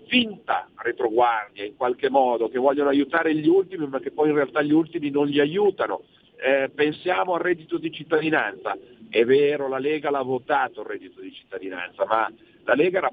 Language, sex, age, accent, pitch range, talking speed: Italian, male, 50-69, native, 155-220 Hz, 185 wpm